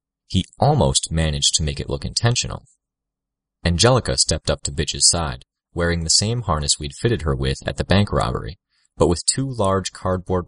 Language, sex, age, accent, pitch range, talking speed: English, male, 30-49, American, 70-95 Hz, 180 wpm